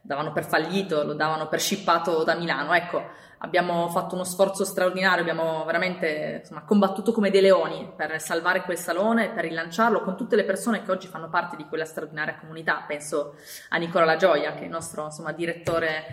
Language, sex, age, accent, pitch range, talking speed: Italian, female, 20-39, native, 160-200 Hz, 180 wpm